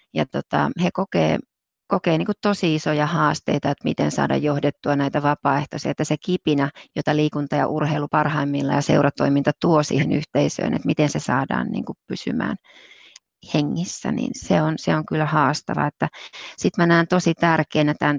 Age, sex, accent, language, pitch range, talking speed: 30-49, female, native, Finnish, 145-165 Hz, 155 wpm